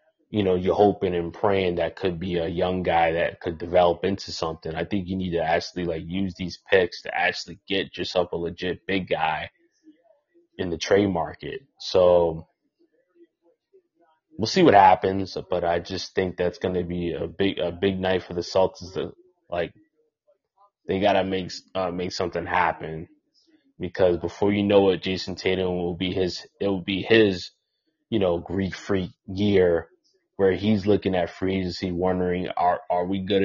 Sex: male